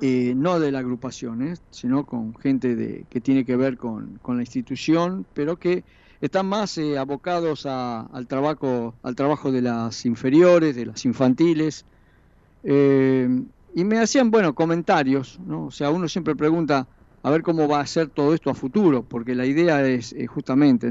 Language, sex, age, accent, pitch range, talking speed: Spanish, male, 50-69, Argentinian, 125-160 Hz, 180 wpm